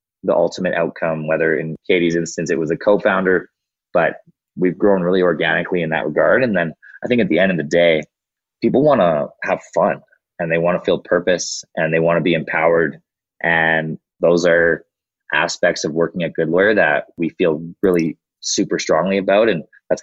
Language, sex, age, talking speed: English, male, 20-39, 190 wpm